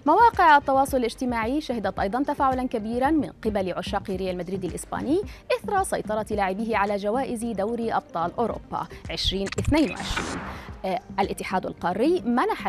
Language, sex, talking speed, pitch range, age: Arabic, female, 120 wpm, 200-320 Hz, 20-39